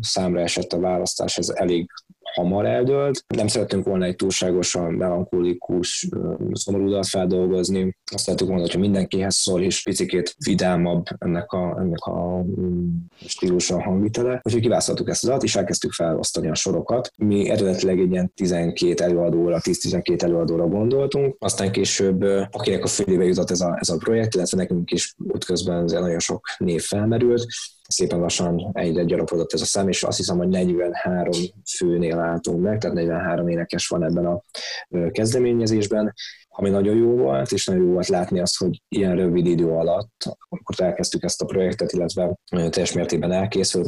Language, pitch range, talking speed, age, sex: Hungarian, 85-100 Hz, 160 wpm, 20-39, male